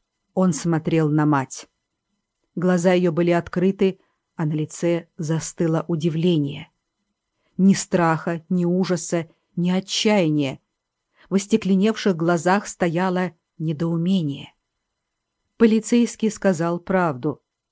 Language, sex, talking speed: English, female, 90 wpm